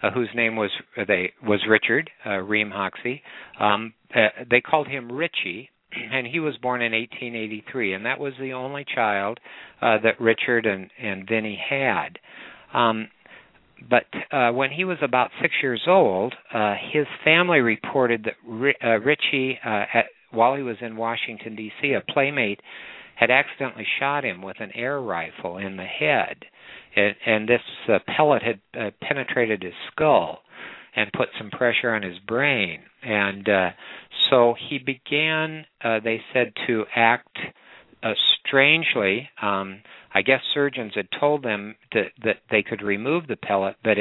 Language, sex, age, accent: English, male, 60-79, American